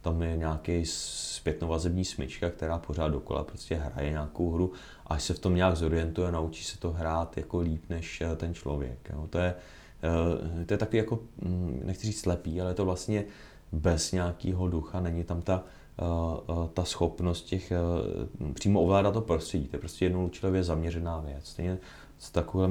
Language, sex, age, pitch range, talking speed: Czech, male, 30-49, 80-90 Hz, 165 wpm